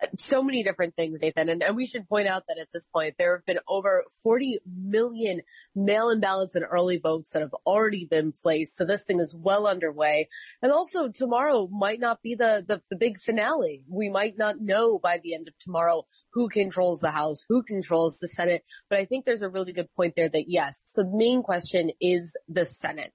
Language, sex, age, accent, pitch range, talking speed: English, female, 30-49, American, 165-210 Hz, 215 wpm